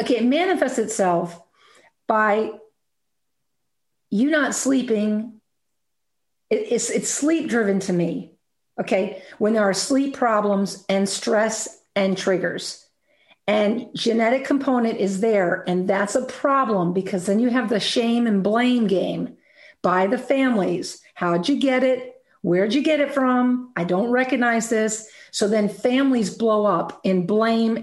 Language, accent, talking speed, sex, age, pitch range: English, American, 140 wpm, female, 50-69, 195-245 Hz